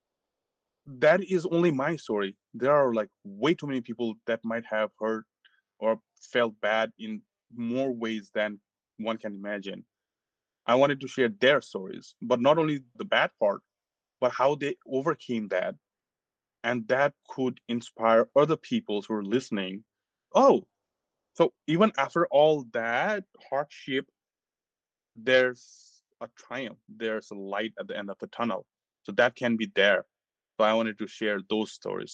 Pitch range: 105-135 Hz